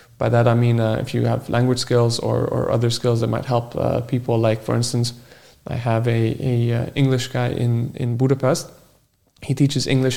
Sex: male